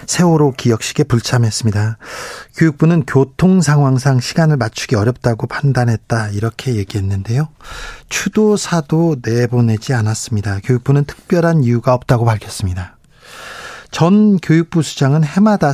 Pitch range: 120-155 Hz